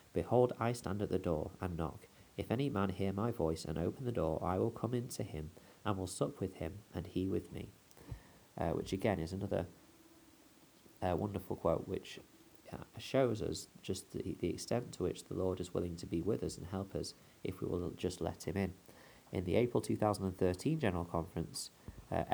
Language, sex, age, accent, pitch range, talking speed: English, male, 30-49, British, 85-110 Hz, 205 wpm